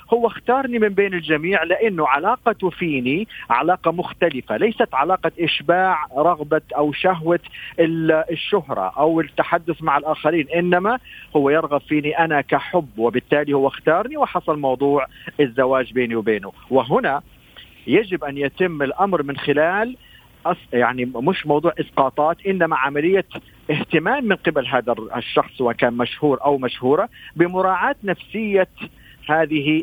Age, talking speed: 50-69, 120 wpm